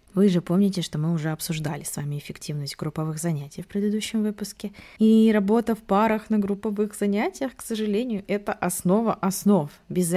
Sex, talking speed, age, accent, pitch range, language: female, 165 wpm, 20-39, native, 165-210 Hz, Russian